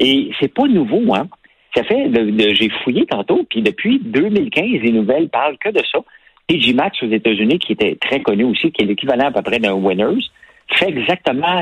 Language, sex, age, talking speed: French, male, 50-69, 205 wpm